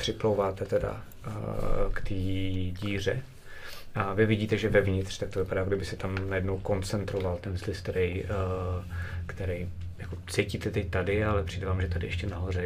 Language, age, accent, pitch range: Czech, 30-49, native, 90-110 Hz